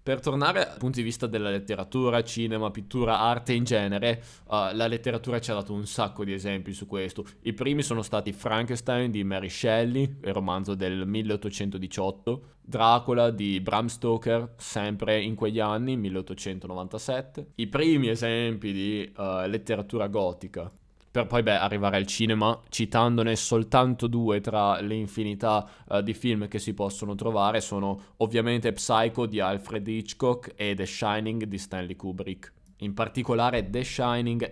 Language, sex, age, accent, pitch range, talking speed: Italian, male, 20-39, native, 100-115 Hz, 150 wpm